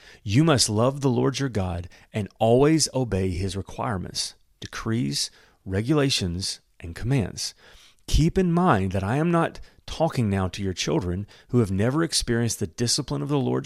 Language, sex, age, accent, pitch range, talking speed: English, male, 30-49, American, 100-135 Hz, 165 wpm